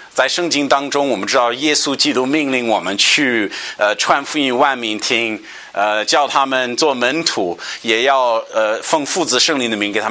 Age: 50-69